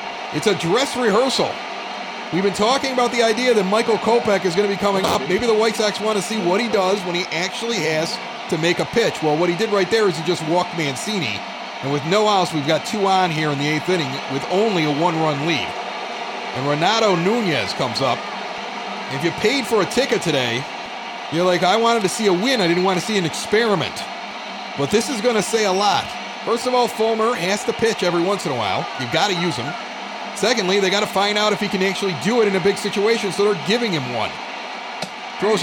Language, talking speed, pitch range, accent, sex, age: English, 235 wpm, 180-230 Hz, American, male, 30-49